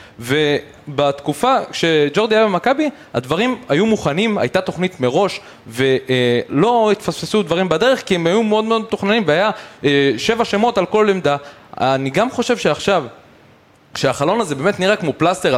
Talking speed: 140 wpm